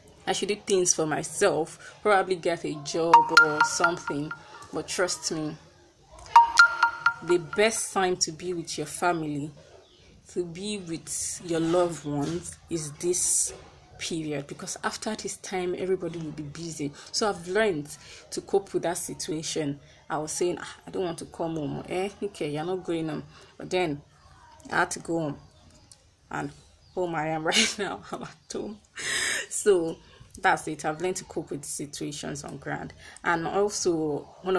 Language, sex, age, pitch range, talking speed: English, female, 20-39, 160-205 Hz, 165 wpm